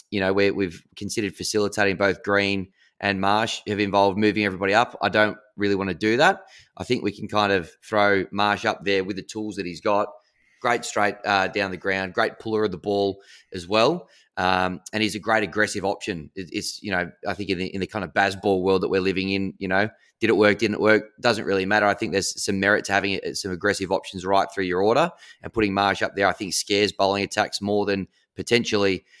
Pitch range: 95-105 Hz